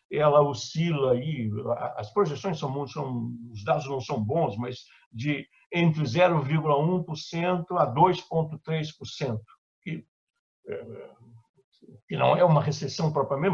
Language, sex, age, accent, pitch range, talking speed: Portuguese, male, 60-79, Brazilian, 145-190 Hz, 115 wpm